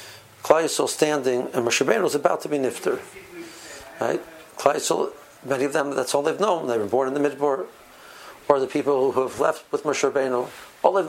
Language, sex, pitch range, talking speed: English, male, 135-185 Hz, 185 wpm